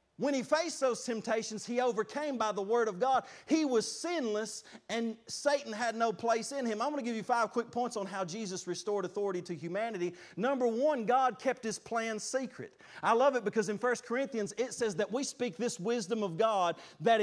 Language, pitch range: English, 215-265 Hz